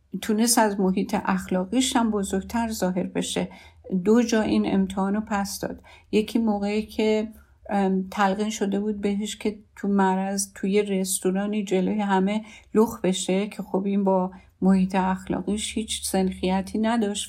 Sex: female